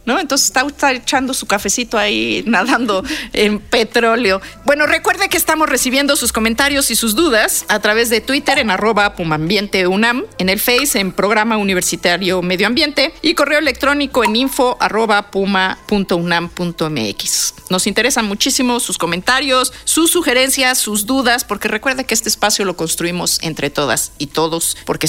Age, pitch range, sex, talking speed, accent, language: 40-59, 200-280 Hz, female, 155 wpm, Mexican, Spanish